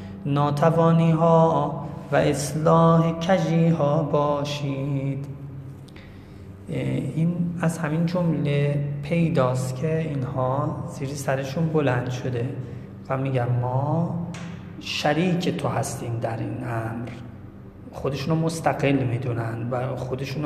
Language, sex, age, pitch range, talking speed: Persian, male, 30-49, 130-150 Hz, 95 wpm